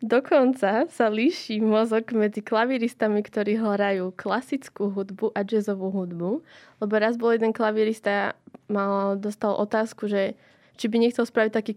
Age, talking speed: 20-39, 140 wpm